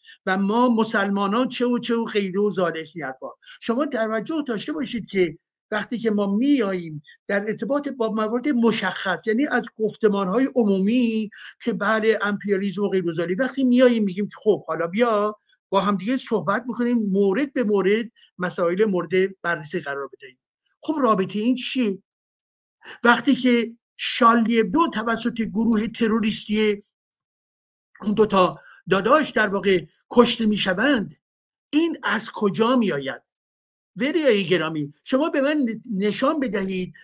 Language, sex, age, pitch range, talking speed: Persian, male, 50-69, 195-245 Hz, 135 wpm